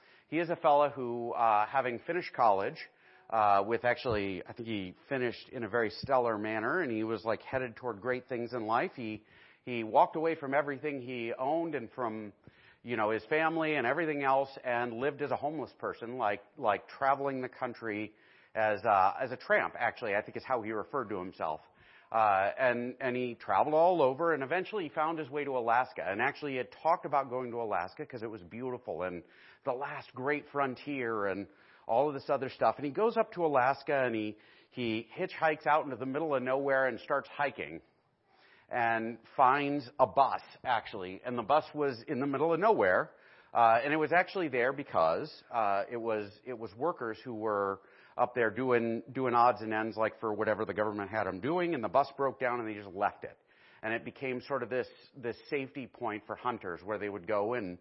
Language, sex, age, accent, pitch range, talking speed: English, male, 40-59, American, 110-140 Hz, 210 wpm